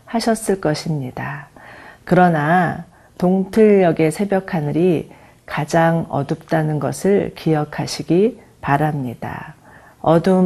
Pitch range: 150-190 Hz